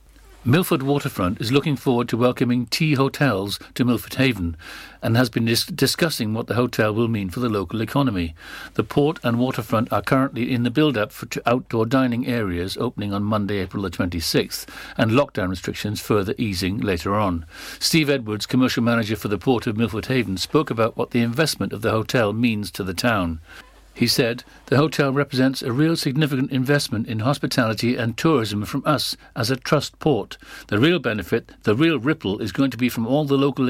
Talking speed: 190 wpm